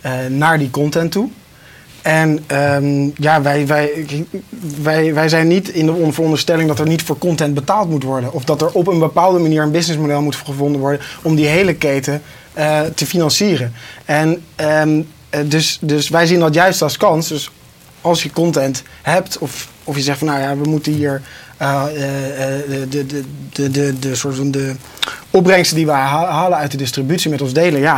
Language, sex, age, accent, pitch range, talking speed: Dutch, male, 20-39, Dutch, 140-170 Hz, 180 wpm